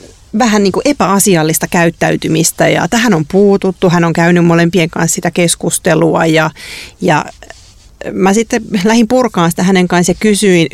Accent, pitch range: native, 165-210 Hz